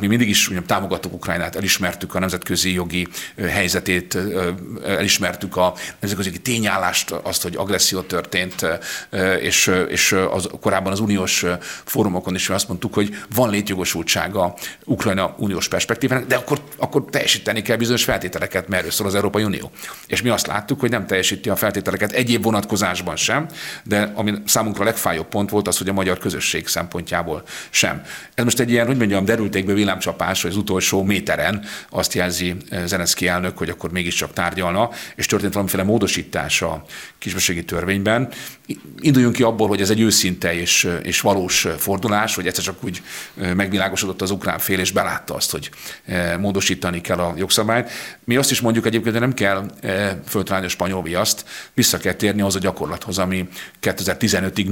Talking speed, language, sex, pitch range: 160 wpm, Hungarian, male, 90-110 Hz